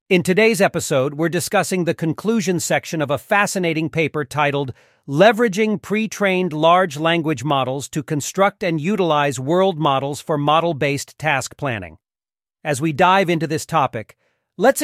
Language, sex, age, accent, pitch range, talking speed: English, male, 40-59, American, 135-175 Hz, 140 wpm